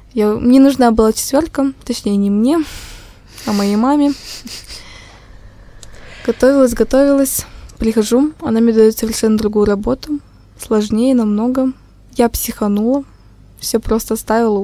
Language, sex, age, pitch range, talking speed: Russian, female, 20-39, 210-245 Hz, 105 wpm